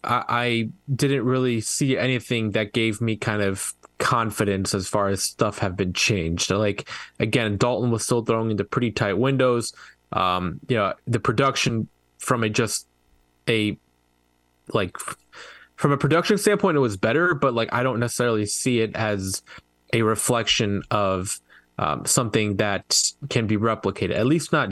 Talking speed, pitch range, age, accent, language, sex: 160 wpm, 105-130 Hz, 20-39, American, English, male